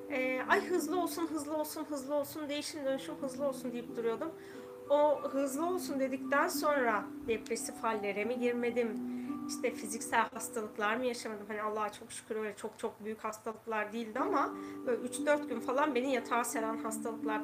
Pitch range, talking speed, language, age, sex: 225-300 Hz, 160 wpm, Turkish, 30-49, female